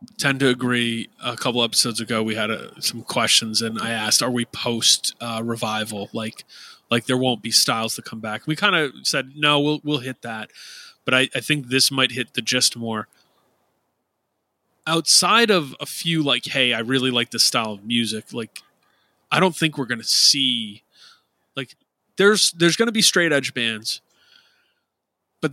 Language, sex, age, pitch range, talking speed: English, male, 30-49, 115-145 Hz, 180 wpm